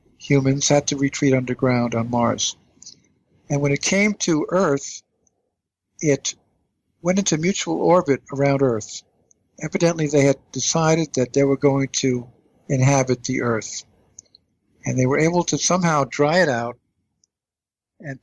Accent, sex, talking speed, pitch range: American, male, 140 wpm, 120-160 Hz